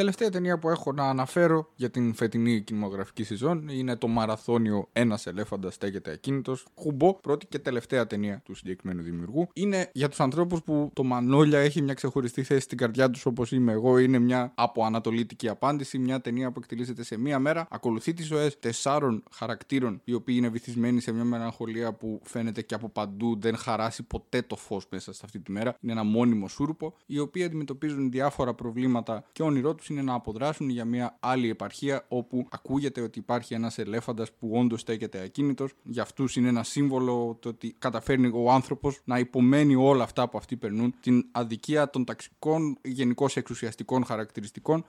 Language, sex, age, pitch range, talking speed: Greek, male, 20-39, 115-140 Hz, 195 wpm